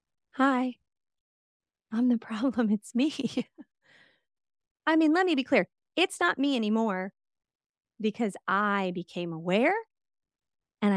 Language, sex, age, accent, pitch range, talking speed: English, female, 30-49, American, 195-265 Hz, 115 wpm